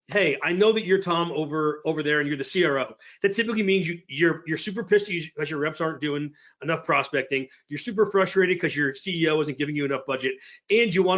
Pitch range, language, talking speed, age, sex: 135-175 Hz, English, 225 wpm, 30-49, male